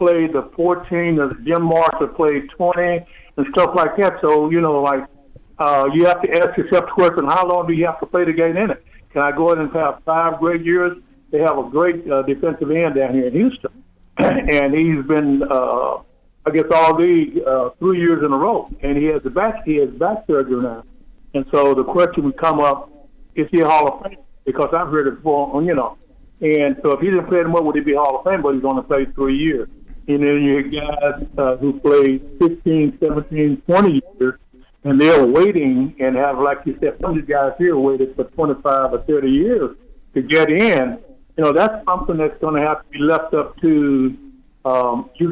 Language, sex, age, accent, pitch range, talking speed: English, male, 60-79, American, 140-170 Hz, 220 wpm